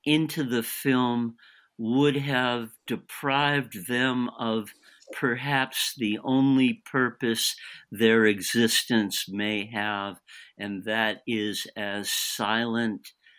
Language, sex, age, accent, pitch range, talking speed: English, male, 50-69, American, 95-120 Hz, 95 wpm